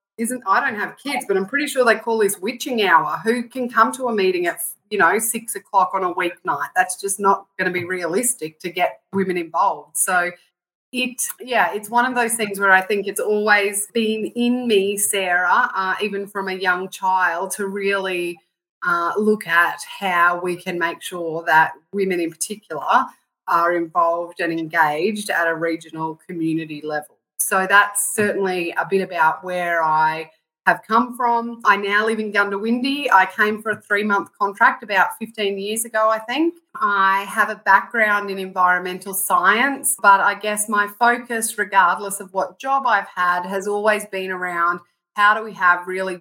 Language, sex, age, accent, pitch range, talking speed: English, female, 30-49, Australian, 180-220 Hz, 180 wpm